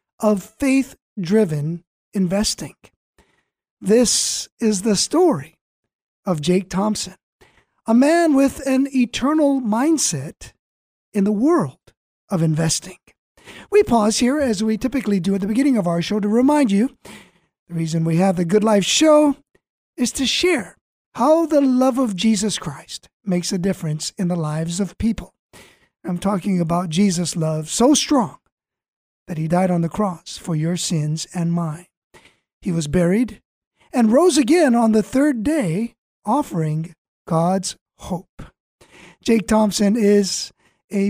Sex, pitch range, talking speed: male, 180-245 Hz, 140 wpm